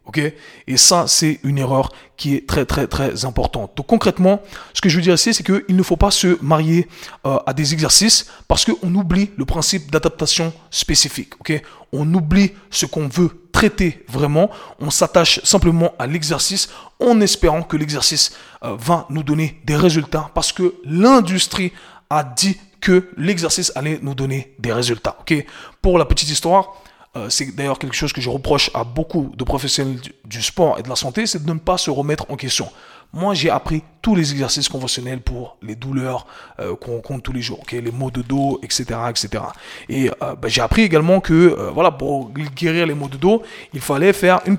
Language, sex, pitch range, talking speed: French, male, 140-185 Hz, 190 wpm